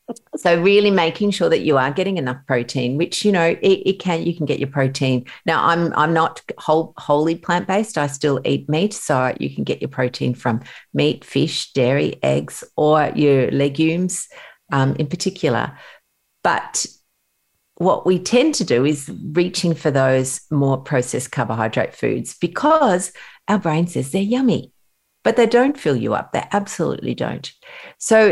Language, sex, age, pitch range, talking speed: English, female, 50-69, 130-185 Hz, 170 wpm